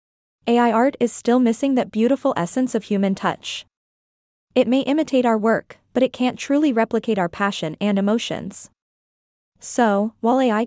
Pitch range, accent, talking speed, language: 200-250 Hz, American, 155 wpm, English